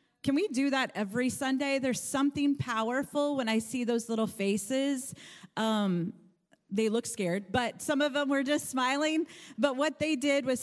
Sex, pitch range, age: female, 205-260 Hz, 30-49